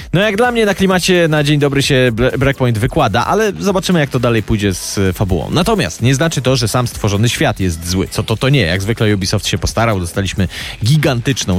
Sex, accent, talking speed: male, native, 215 wpm